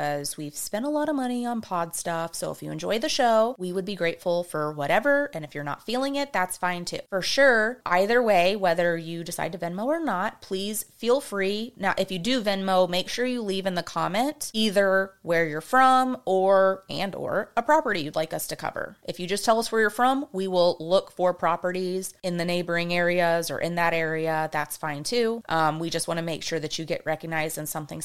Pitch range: 170-225 Hz